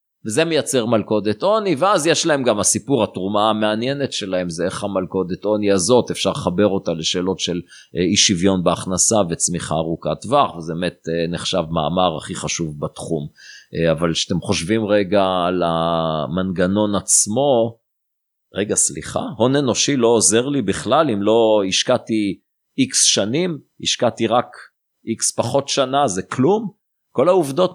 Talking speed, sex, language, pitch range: 140 wpm, male, Hebrew, 90-125 Hz